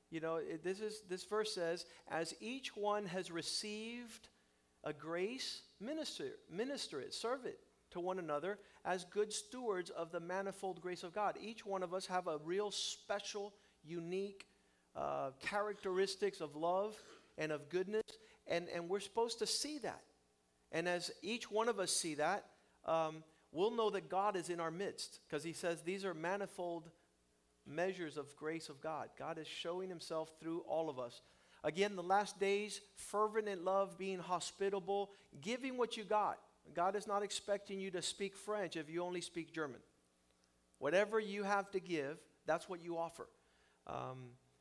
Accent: American